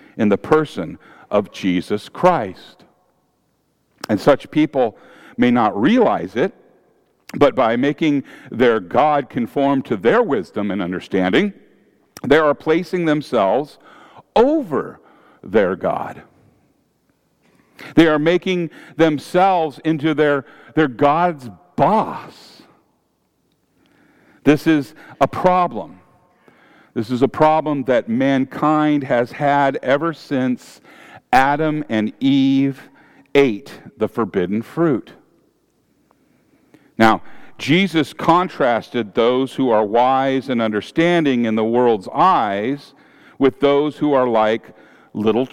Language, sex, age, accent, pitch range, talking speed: English, male, 50-69, American, 120-155 Hz, 105 wpm